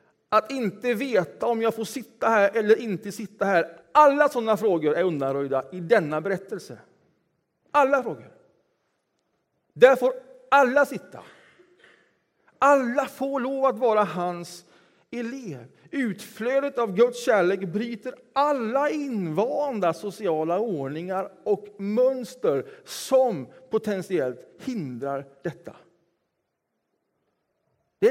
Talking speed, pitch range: 105 wpm, 175-250 Hz